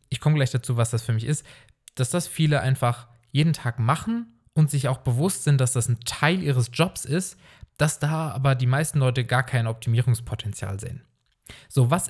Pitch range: 115-150 Hz